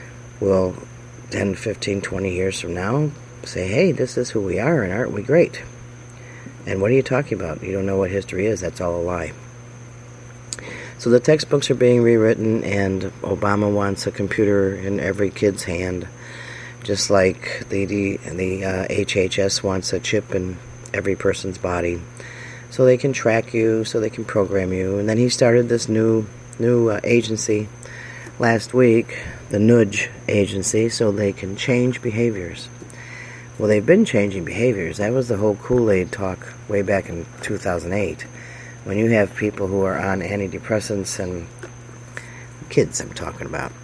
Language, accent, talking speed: English, American, 165 wpm